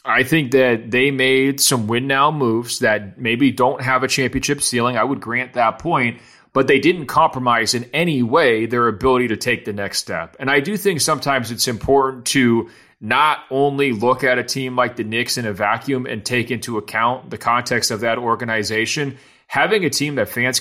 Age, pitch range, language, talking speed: 30-49, 115-135 Hz, English, 200 wpm